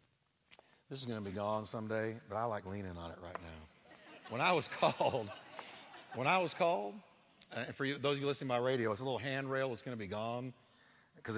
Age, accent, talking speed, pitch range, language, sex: 50-69, American, 220 wpm, 110-140 Hz, English, male